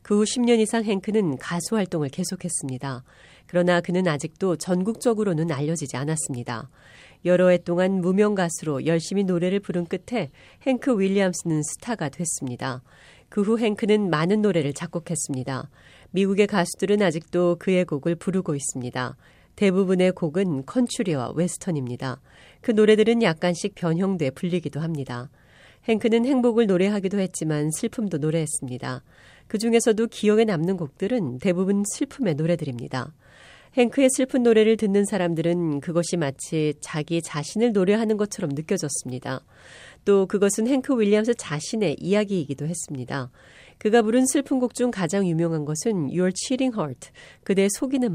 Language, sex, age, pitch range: Korean, female, 40-59, 150-215 Hz